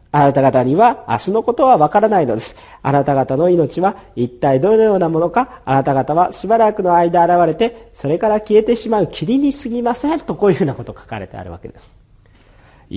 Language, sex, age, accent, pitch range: Japanese, male, 40-59, native, 150-250 Hz